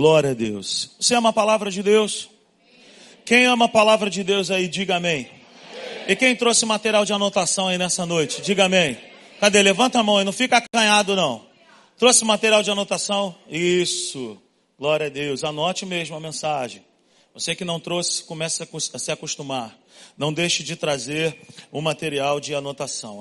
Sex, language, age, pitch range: male, Portuguese, 40-59, 170-215 Hz